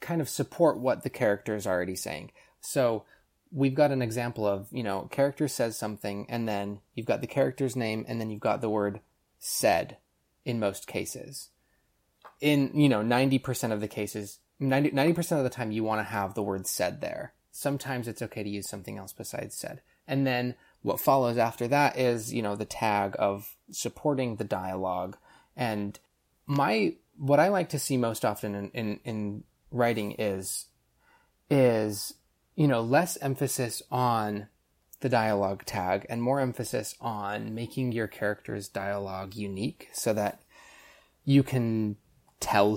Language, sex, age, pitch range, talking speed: English, male, 20-39, 105-130 Hz, 165 wpm